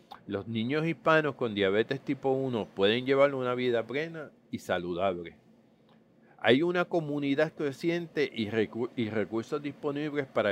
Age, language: 40-59, English